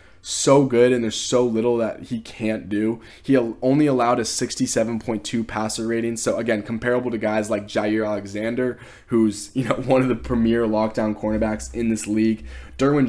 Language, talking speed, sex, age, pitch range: English, 175 wpm, male, 10-29, 105-125 Hz